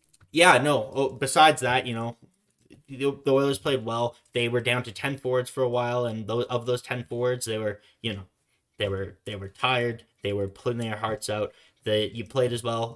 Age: 20-39